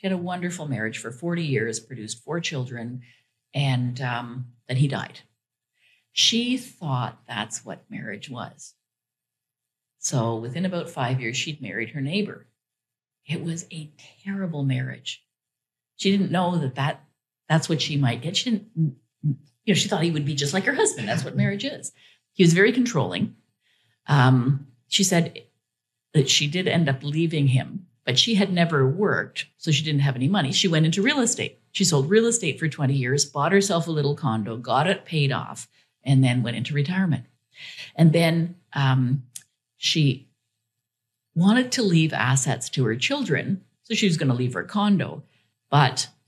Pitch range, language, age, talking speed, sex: 125-170 Hz, English, 50-69, 170 wpm, female